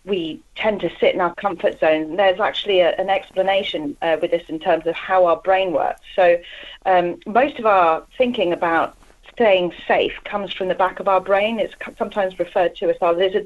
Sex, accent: female, British